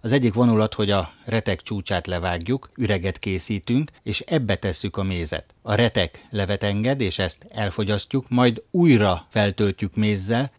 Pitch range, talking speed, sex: 100-120 Hz, 145 wpm, male